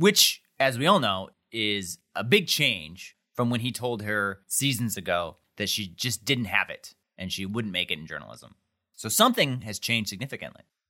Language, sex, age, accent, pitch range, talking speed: English, male, 30-49, American, 105-145 Hz, 185 wpm